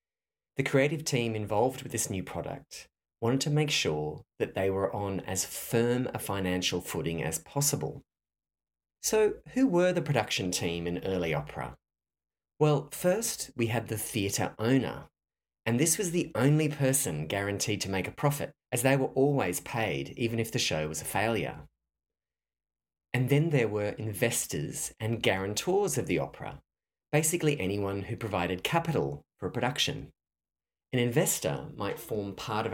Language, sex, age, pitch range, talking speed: English, male, 30-49, 95-145 Hz, 160 wpm